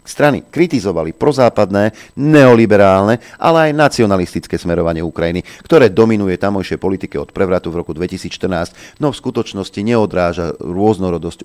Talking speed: 120 wpm